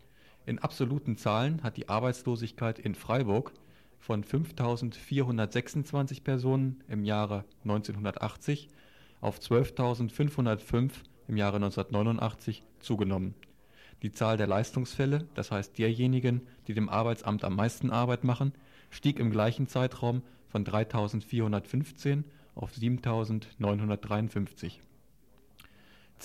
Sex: male